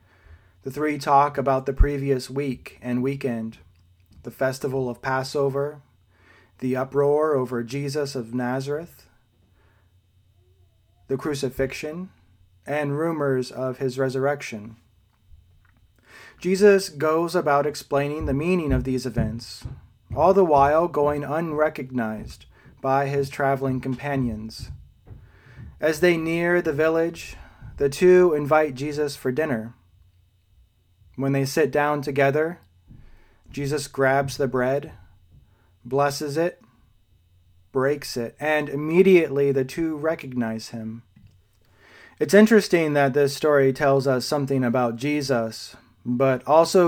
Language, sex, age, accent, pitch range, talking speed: English, male, 30-49, American, 110-145 Hz, 110 wpm